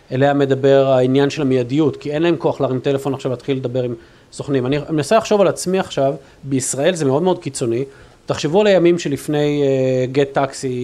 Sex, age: male, 40-59